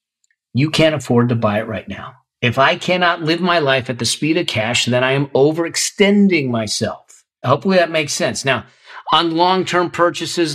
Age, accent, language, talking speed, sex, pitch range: 40-59, American, English, 180 wpm, male, 130-185 Hz